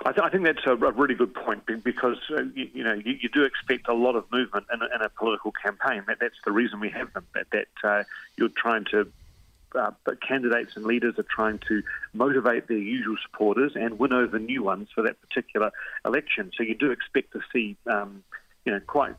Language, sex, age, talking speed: English, male, 40-59, 215 wpm